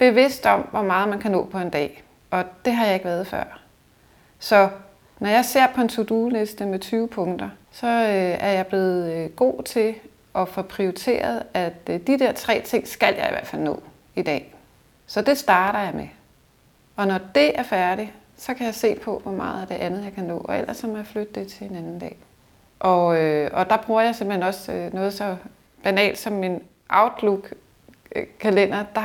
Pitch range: 185-220 Hz